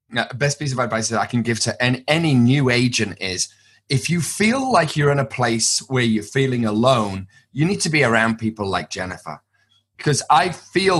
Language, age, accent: English, 30-49, British